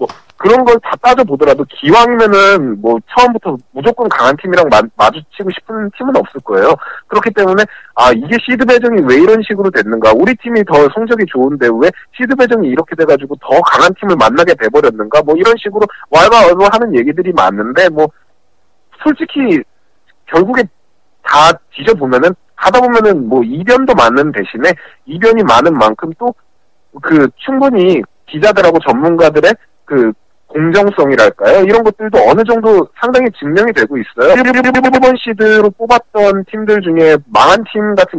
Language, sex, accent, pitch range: Korean, male, native, 155-235 Hz